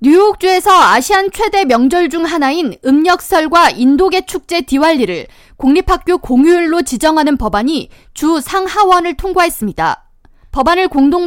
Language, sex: Korean, female